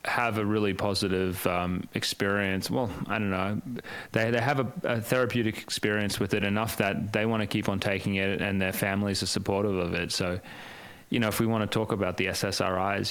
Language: English